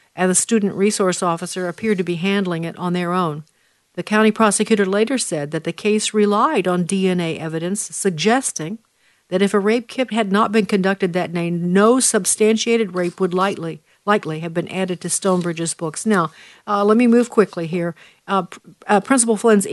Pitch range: 175-225 Hz